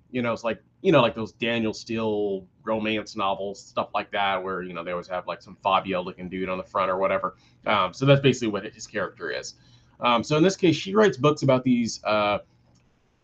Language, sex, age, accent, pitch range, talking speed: English, male, 20-39, American, 105-125 Hz, 225 wpm